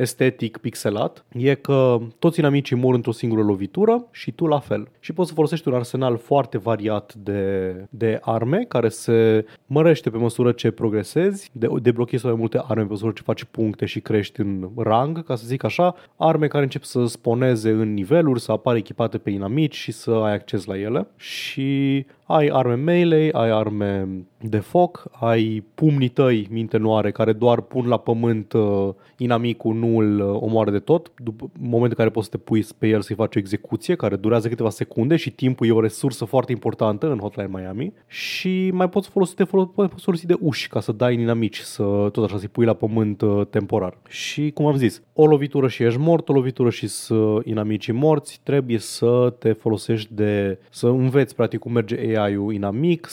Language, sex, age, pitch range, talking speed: Romanian, male, 20-39, 110-140 Hz, 195 wpm